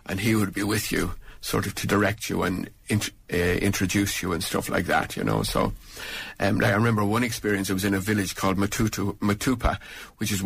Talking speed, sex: 225 wpm, male